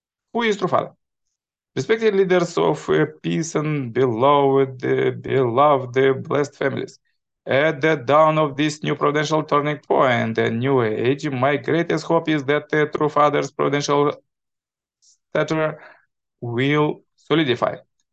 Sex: male